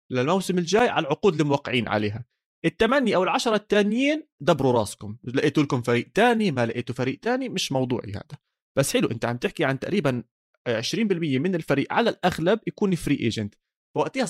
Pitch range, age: 120-180 Hz, 30-49